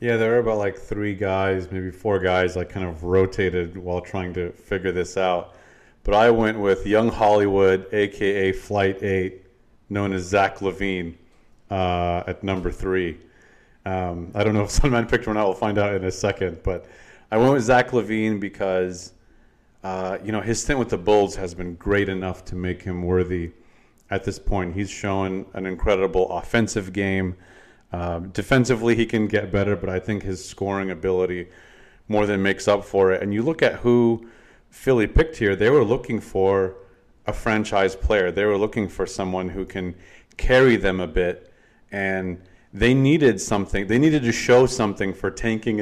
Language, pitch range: English, 95-105 Hz